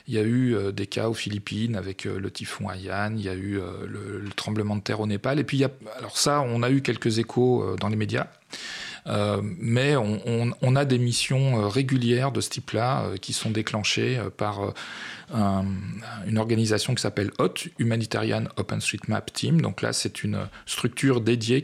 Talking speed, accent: 215 wpm, French